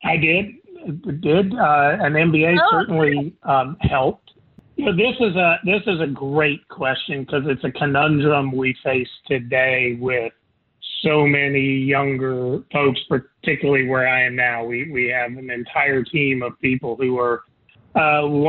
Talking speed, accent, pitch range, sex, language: 150 wpm, American, 130-155 Hz, male, English